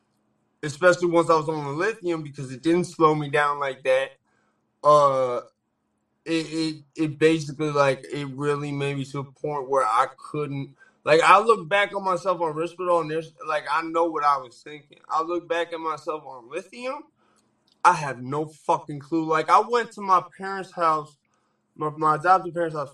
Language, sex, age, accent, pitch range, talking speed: English, male, 20-39, American, 145-175 Hz, 190 wpm